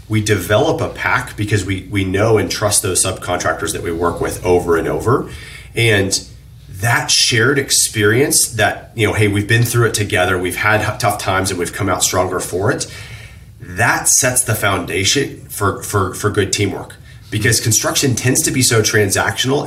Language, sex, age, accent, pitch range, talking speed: English, male, 30-49, American, 100-120 Hz, 180 wpm